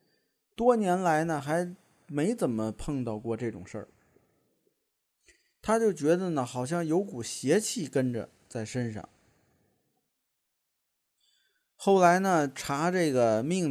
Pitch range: 125-175 Hz